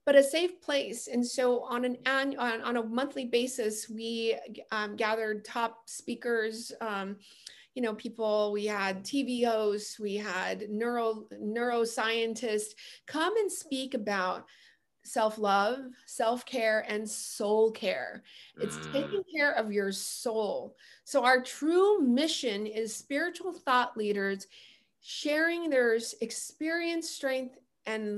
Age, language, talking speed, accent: 30-49, English, 125 wpm, American